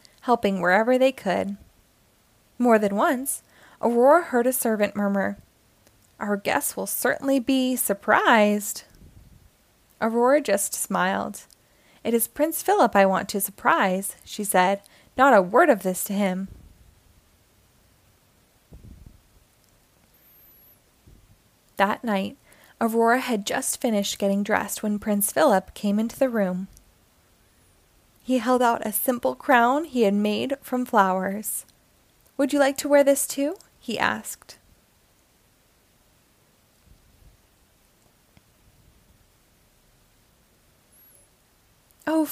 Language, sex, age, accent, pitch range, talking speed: English, female, 20-39, American, 190-250 Hz, 105 wpm